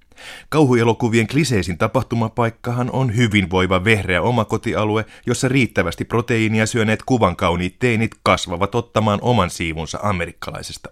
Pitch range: 90-120 Hz